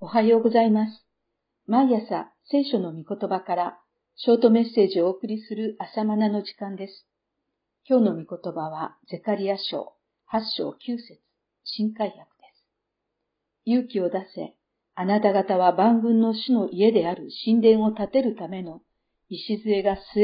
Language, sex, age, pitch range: Japanese, female, 50-69, 185-230 Hz